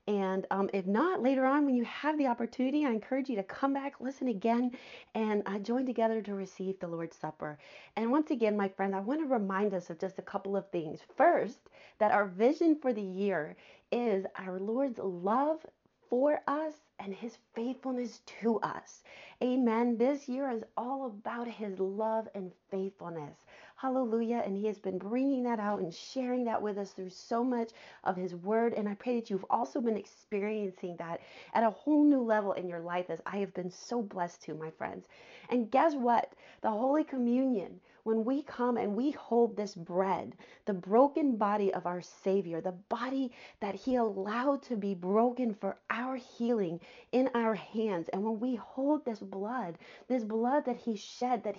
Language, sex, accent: English, female, American